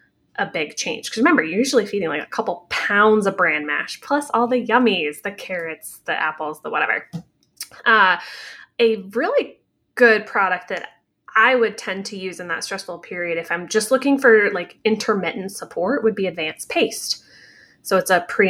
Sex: female